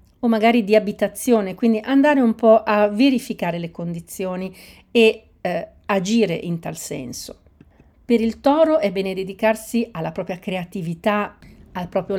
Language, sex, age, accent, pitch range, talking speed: Italian, female, 40-59, native, 180-230 Hz, 140 wpm